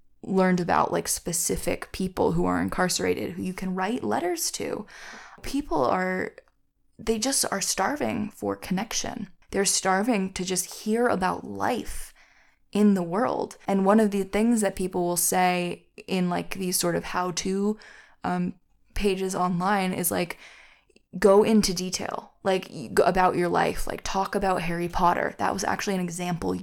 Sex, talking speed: female, 155 wpm